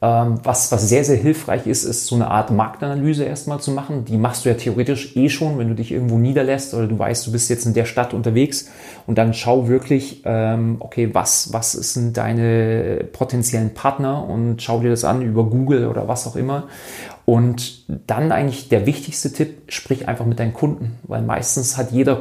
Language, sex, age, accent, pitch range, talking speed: German, male, 40-59, German, 115-135 Hz, 195 wpm